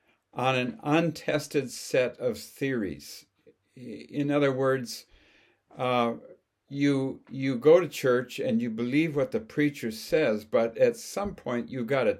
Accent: American